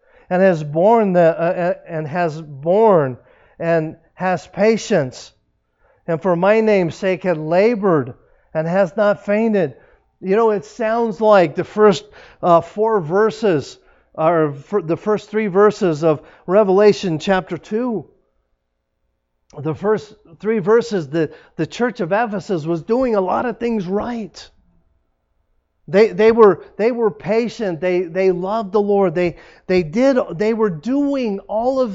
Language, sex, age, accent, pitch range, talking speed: English, male, 50-69, American, 125-205 Hz, 140 wpm